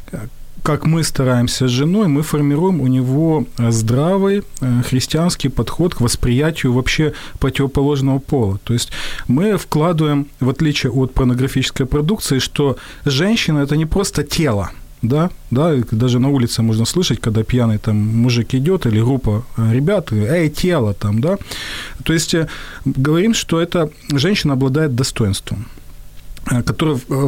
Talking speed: 135 wpm